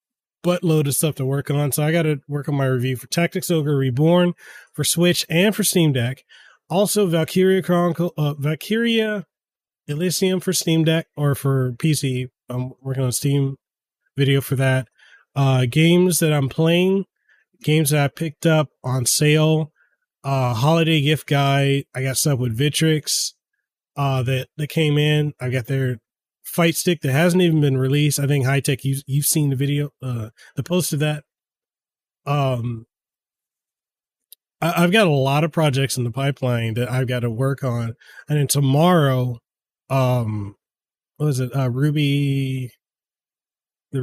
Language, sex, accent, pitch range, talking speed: English, male, American, 135-160 Hz, 165 wpm